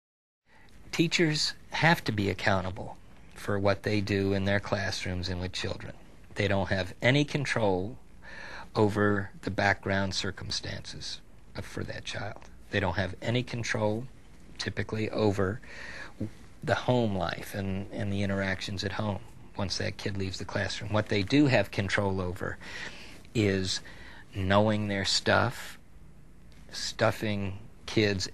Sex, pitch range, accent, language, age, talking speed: male, 95-110 Hz, American, English, 50-69, 130 wpm